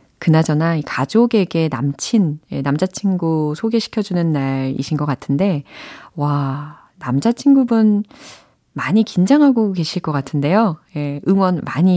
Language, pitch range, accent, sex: Korean, 150-240 Hz, native, female